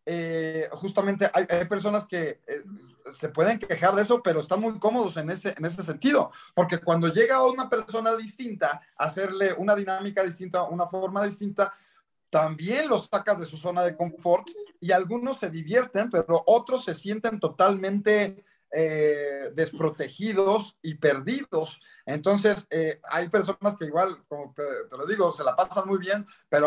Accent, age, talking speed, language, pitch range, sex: Mexican, 40-59, 165 wpm, Spanish, 150-200 Hz, male